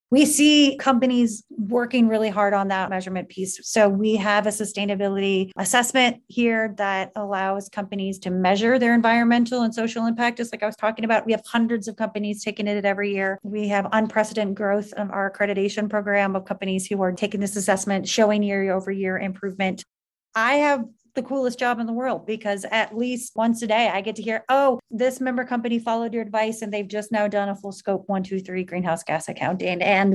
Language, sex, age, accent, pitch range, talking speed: English, female, 30-49, American, 195-230 Hz, 205 wpm